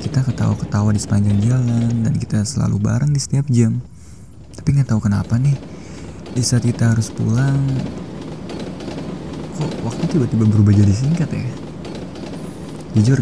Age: 20-39